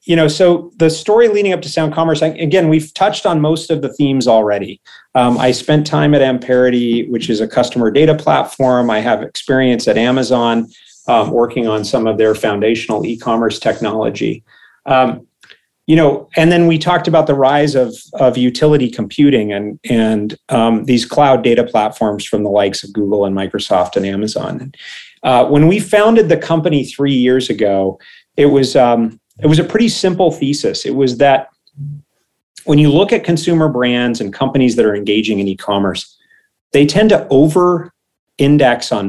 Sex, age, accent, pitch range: male, 40-59, American, 110-155 Hz